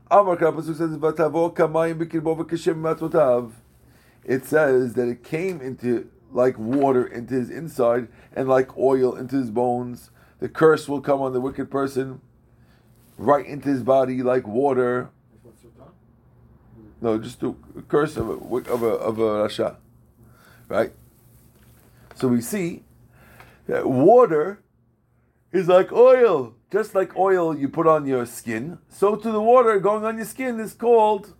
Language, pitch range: English, 120-160 Hz